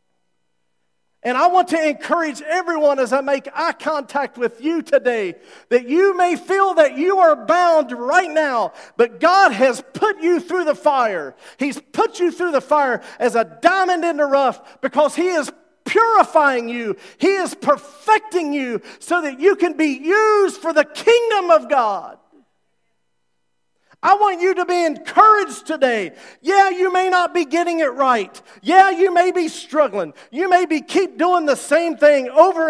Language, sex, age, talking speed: English, male, 40-59, 170 wpm